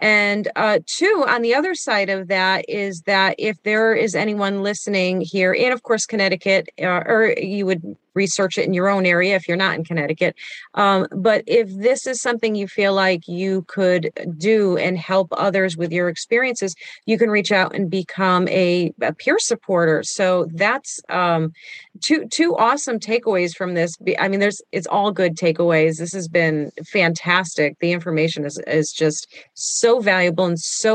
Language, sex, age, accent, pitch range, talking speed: English, female, 30-49, American, 170-200 Hz, 180 wpm